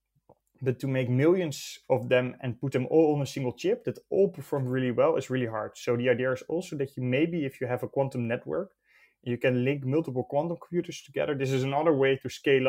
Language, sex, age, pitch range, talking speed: English, male, 20-39, 120-140 Hz, 230 wpm